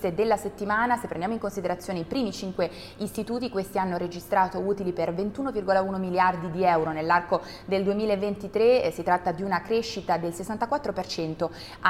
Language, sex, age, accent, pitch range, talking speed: Italian, female, 20-39, native, 170-205 Hz, 145 wpm